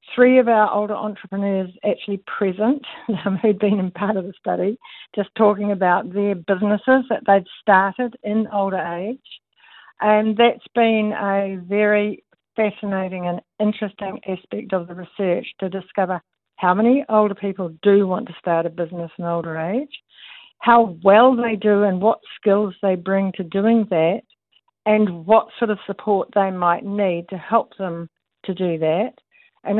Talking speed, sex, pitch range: 160 wpm, female, 180-215 Hz